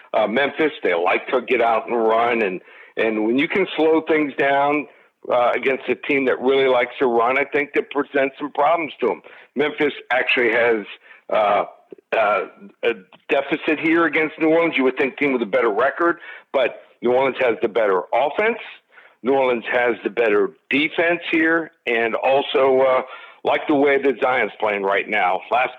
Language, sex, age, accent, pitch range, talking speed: English, male, 60-79, American, 130-160 Hz, 185 wpm